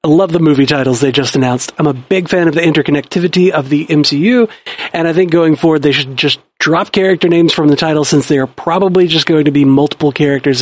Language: English